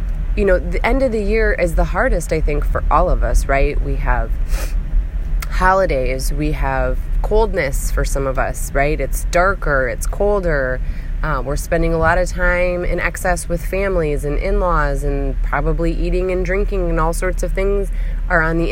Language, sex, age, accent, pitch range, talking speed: English, female, 20-39, American, 150-195 Hz, 185 wpm